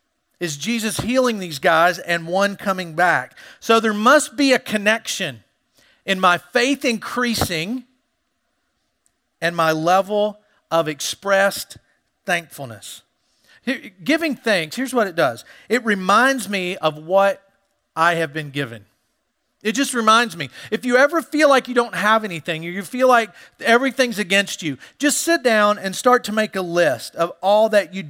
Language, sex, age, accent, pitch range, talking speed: English, male, 40-59, American, 175-240 Hz, 155 wpm